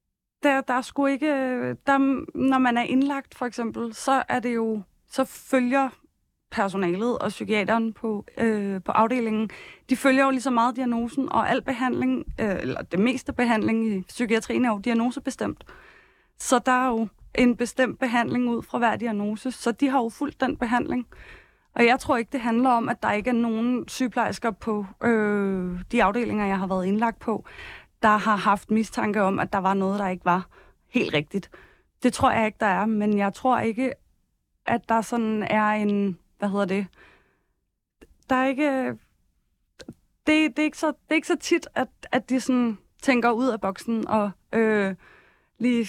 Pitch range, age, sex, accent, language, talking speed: 210-255 Hz, 20-39, female, native, Danish, 180 wpm